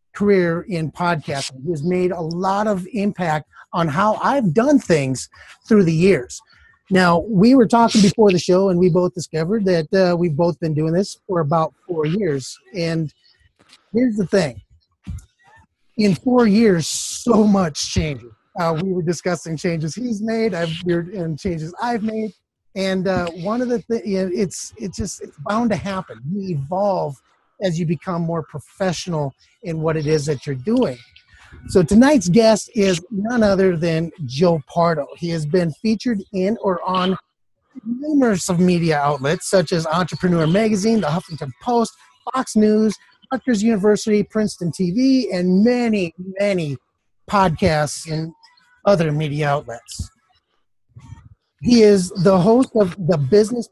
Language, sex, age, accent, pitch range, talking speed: English, male, 30-49, American, 160-210 Hz, 155 wpm